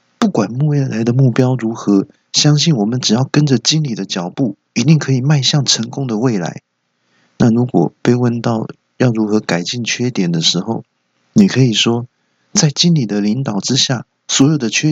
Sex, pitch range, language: male, 105-145 Hz, Chinese